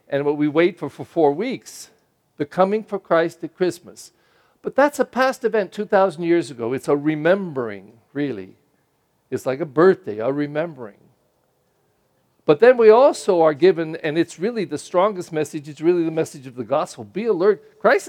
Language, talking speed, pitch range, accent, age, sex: English, 180 wpm, 150-205 Hz, American, 50-69, male